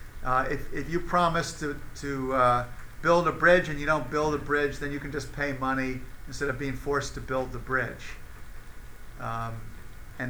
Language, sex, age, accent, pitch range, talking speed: English, male, 50-69, American, 135-165 Hz, 190 wpm